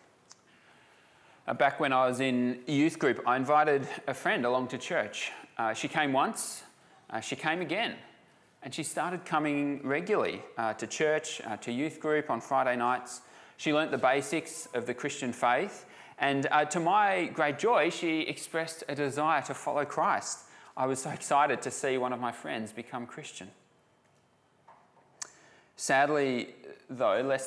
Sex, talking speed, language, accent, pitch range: male, 160 wpm, English, Australian, 120-150 Hz